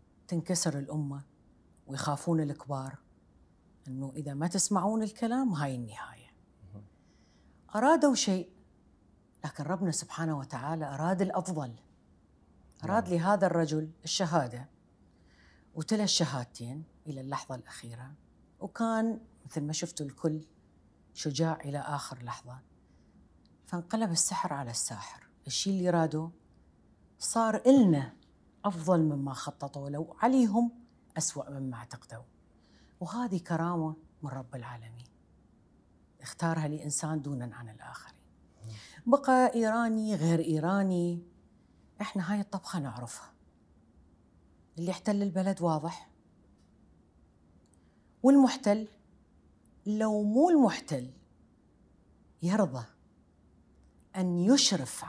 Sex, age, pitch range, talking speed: female, 40-59, 115-185 Hz, 90 wpm